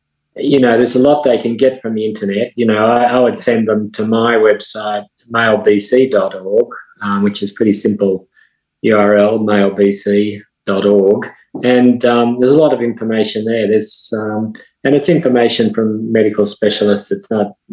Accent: Australian